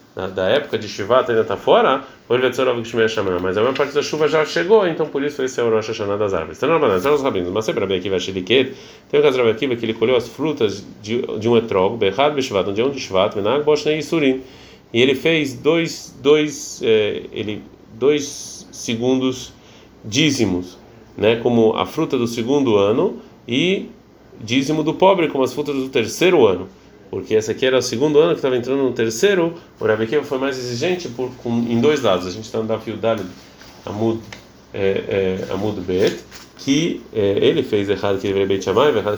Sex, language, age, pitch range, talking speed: male, Portuguese, 30-49, 110-150 Hz, 195 wpm